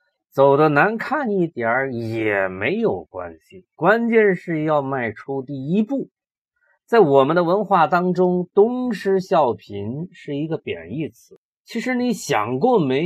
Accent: native